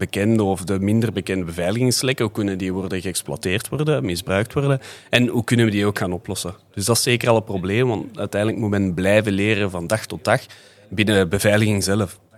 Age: 30-49